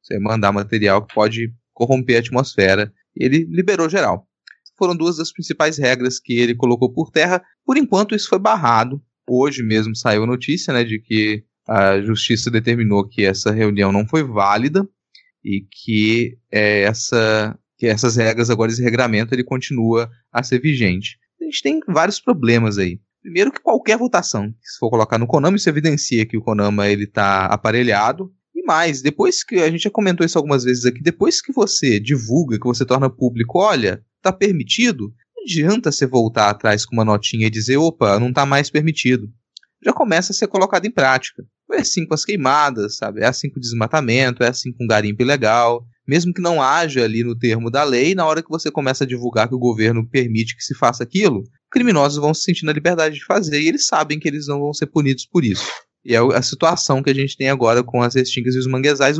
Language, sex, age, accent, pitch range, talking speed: Portuguese, male, 20-39, Brazilian, 115-155 Hz, 200 wpm